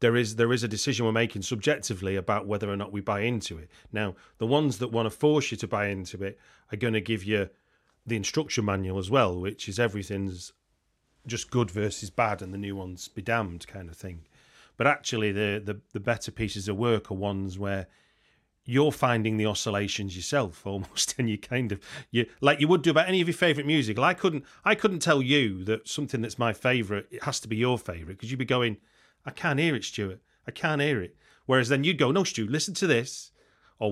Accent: British